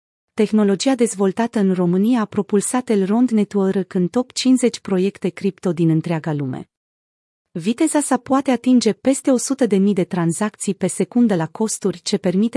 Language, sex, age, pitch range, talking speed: Romanian, female, 30-49, 175-215 Hz, 145 wpm